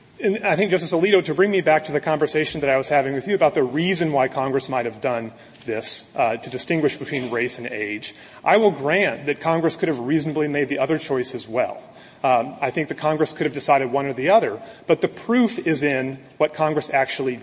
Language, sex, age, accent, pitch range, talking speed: English, male, 30-49, American, 135-170 Hz, 235 wpm